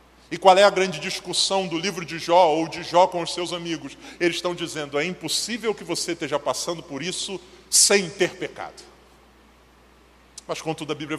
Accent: Brazilian